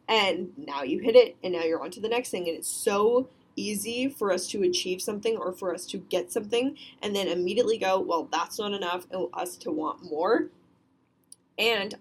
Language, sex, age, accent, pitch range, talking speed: English, female, 10-29, American, 180-235 Hz, 210 wpm